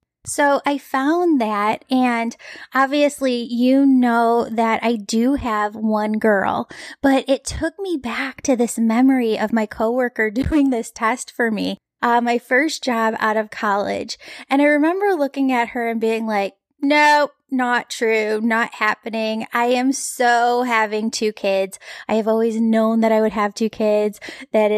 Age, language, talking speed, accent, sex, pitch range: 10-29, English, 165 wpm, American, female, 220-260 Hz